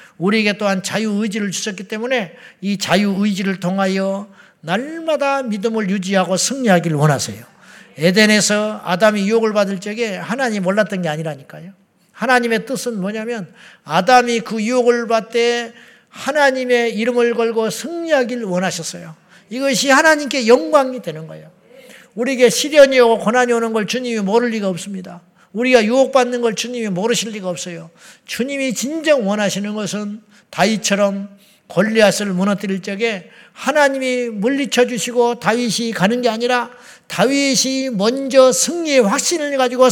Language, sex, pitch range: Korean, male, 190-250 Hz